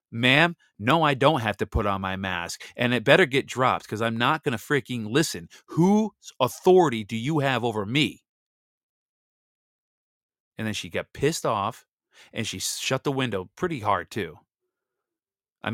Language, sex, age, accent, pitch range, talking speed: English, male, 30-49, American, 100-130 Hz, 170 wpm